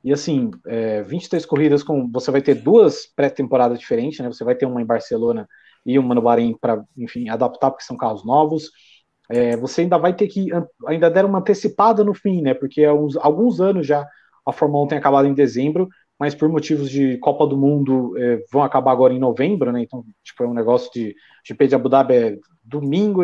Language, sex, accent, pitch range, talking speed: Portuguese, male, Brazilian, 125-165 Hz, 215 wpm